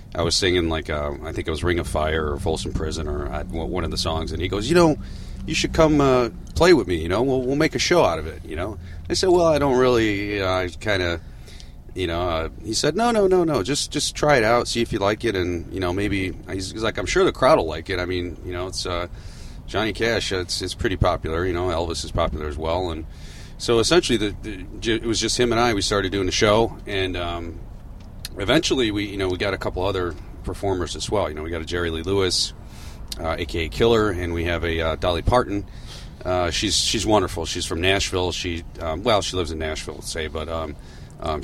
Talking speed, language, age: 250 wpm, English, 40-59